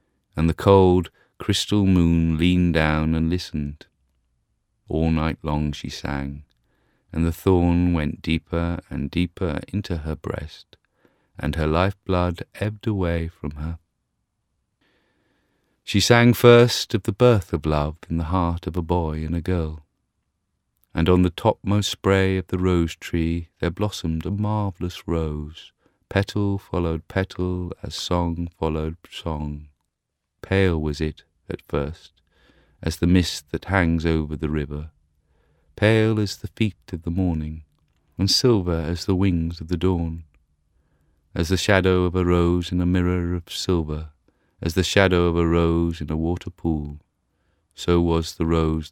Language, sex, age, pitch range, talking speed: English, male, 40-59, 80-95 Hz, 150 wpm